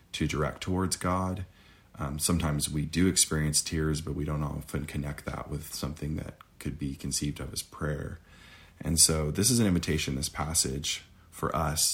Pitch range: 75-85 Hz